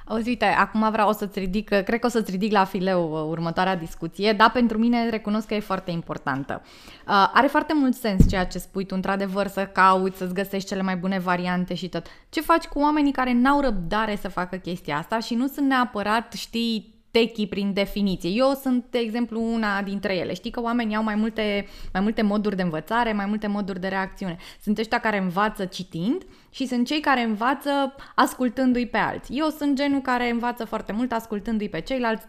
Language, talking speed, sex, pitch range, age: Romanian, 200 wpm, female, 200-240 Hz, 20-39